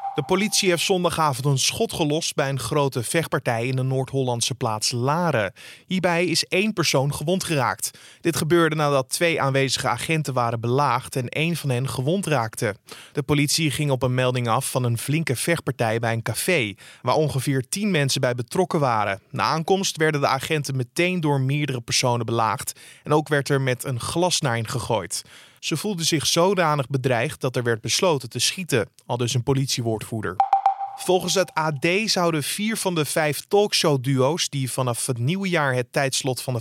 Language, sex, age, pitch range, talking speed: Dutch, male, 20-39, 130-170 Hz, 180 wpm